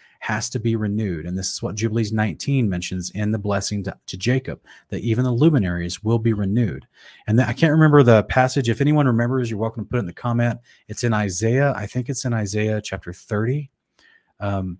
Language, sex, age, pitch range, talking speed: English, male, 30-49, 100-120 Hz, 215 wpm